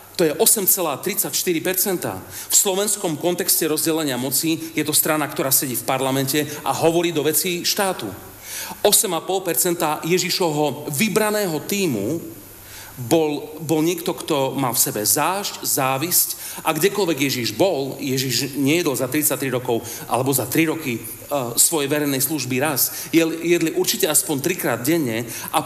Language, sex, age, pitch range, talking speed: Slovak, male, 40-59, 120-165 Hz, 135 wpm